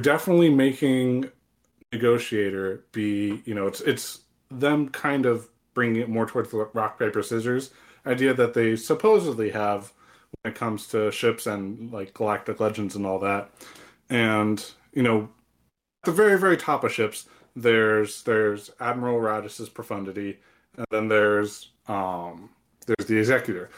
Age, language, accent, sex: 30-49, English, American, male